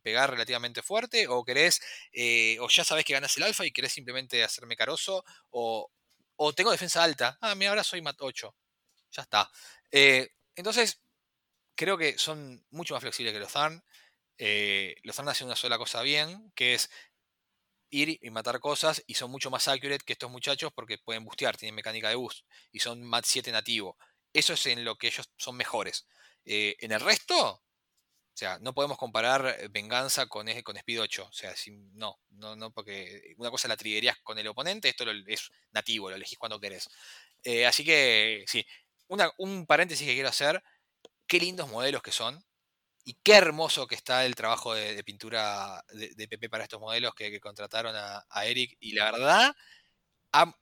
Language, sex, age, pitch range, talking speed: Spanish, male, 20-39, 110-150 Hz, 190 wpm